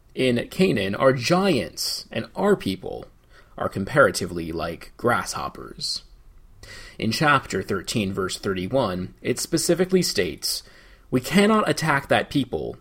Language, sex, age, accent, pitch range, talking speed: English, male, 30-49, American, 115-170 Hz, 110 wpm